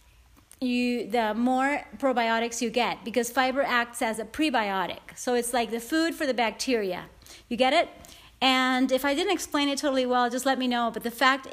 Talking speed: 200 wpm